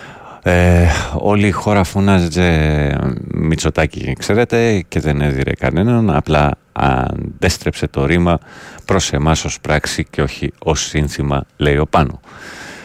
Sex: male